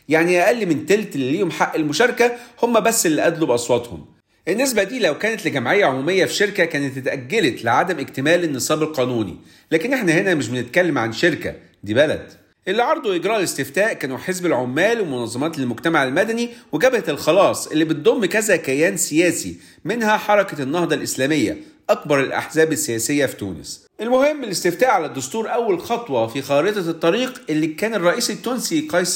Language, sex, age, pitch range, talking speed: Arabic, male, 40-59, 150-210 Hz, 155 wpm